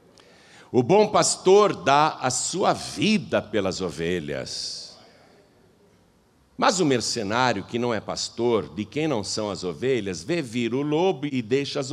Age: 60-79